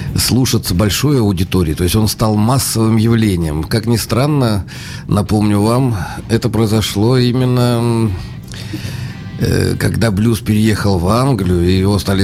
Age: 50-69